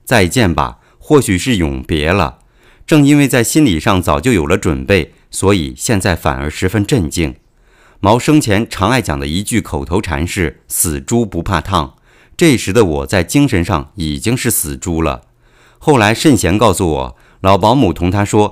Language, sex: Chinese, male